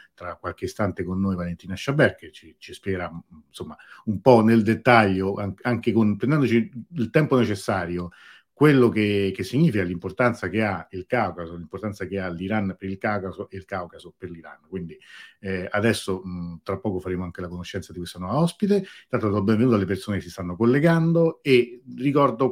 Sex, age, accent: male, 40-59, native